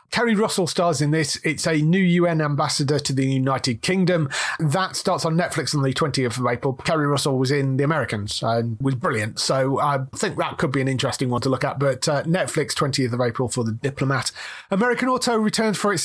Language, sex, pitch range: English, male, 140-185 Hz